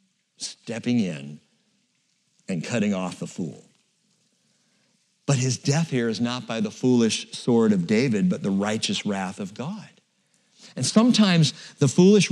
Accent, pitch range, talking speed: American, 140-210 Hz, 140 wpm